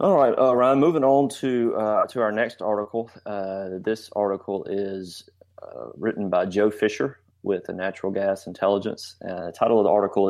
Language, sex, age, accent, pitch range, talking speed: English, male, 30-49, American, 95-110 Hz, 185 wpm